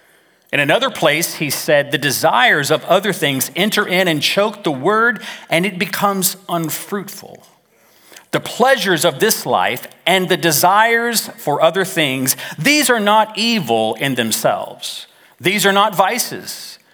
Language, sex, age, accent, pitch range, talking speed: English, male, 40-59, American, 145-205 Hz, 145 wpm